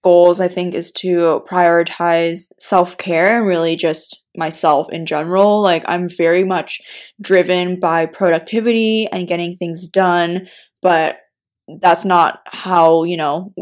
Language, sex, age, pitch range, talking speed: English, female, 20-39, 170-205 Hz, 130 wpm